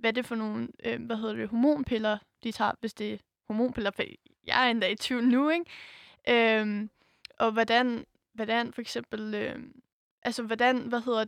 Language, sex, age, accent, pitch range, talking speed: Danish, female, 10-29, native, 220-240 Hz, 185 wpm